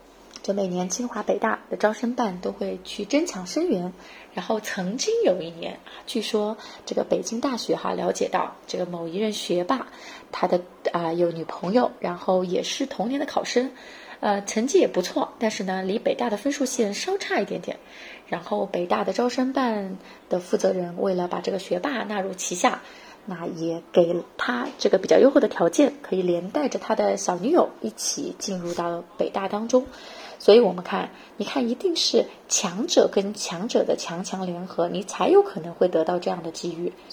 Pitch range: 180-275 Hz